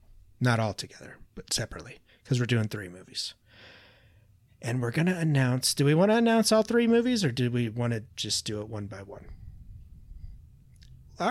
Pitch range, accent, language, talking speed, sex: 110-130 Hz, American, English, 185 wpm, male